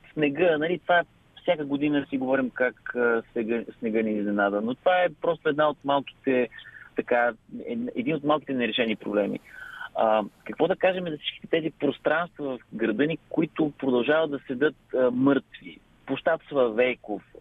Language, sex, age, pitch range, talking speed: Bulgarian, male, 30-49, 125-170 Hz, 150 wpm